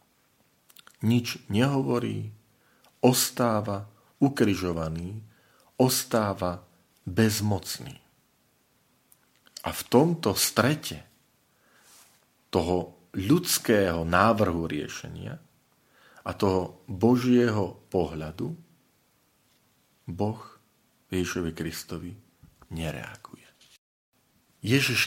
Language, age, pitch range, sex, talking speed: Slovak, 40-59, 95-115 Hz, male, 55 wpm